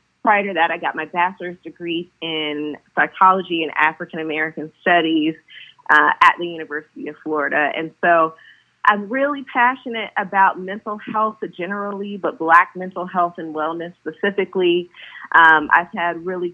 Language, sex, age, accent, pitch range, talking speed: English, female, 30-49, American, 165-200 Hz, 140 wpm